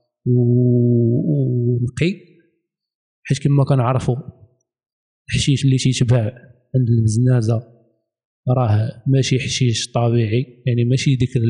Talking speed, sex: 90 wpm, male